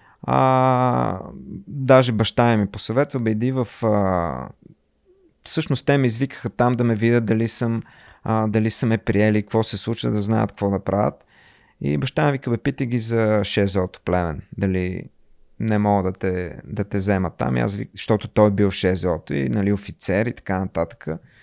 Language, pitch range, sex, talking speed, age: Bulgarian, 100-125 Hz, male, 170 wpm, 30-49